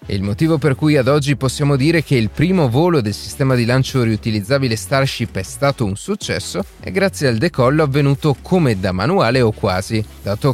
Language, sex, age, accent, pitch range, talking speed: Italian, male, 30-49, native, 105-150 Hz, 190 wpm